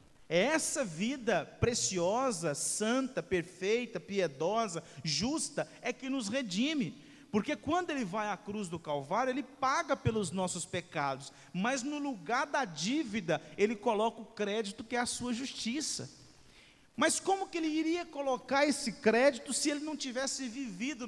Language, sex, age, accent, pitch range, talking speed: Portuguese, male, 50-69, Brazilian, 155-245 Hz, 145 wpm